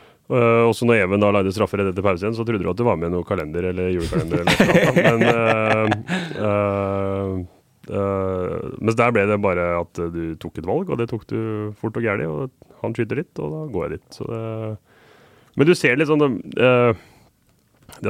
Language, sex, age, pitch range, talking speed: English, male, 30-49, 95-115 Hz, 220 wpm